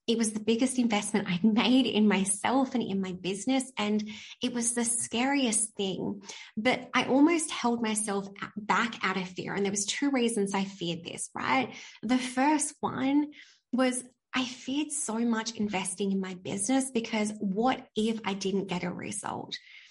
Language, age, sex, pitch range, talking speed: English, 20-39, female, 200-255 Hz, 170 wpm